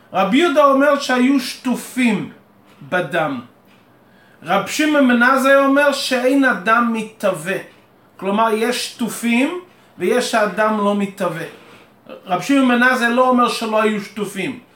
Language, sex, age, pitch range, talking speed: Hebrew, male, 30-49, 210-260 Hz, 110 wpm